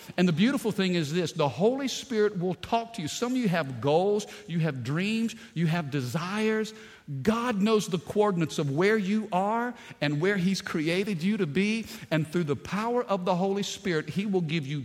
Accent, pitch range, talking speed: American, 160-220 Hz, 205 wpm